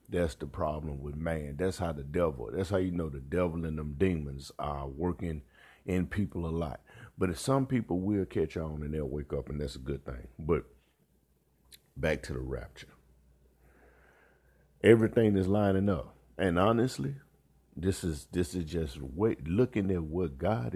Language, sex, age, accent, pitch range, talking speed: English, male, 50-69, American, 70-95 Hz, 175 wpm